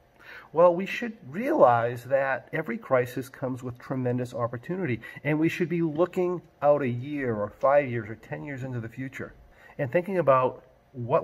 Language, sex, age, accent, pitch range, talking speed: English, male, 40-59, American, 120-165 Hz, 170 wpm